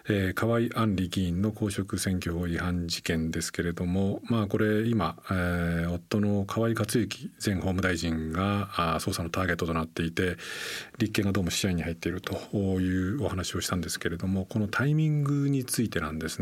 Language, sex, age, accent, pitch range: Japanese, male, 40-59, native, 85-110 Hz